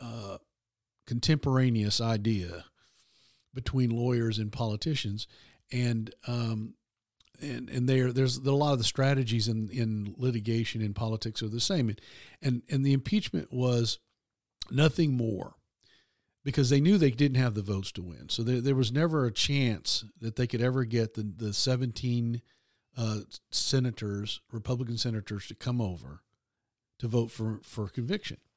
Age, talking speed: 50-69, 155 wpm